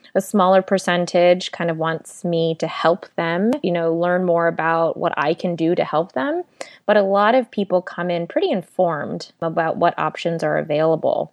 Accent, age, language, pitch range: American, 20-39, English, 165-195 Hz